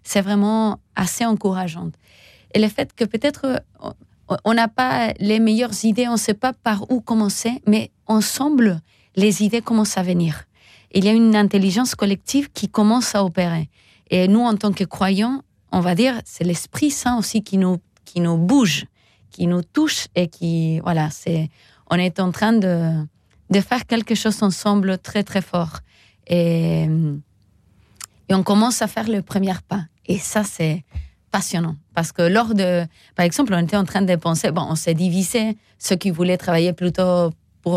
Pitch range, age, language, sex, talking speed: 170-220 Hz, 30-49, French, female, 175 wpm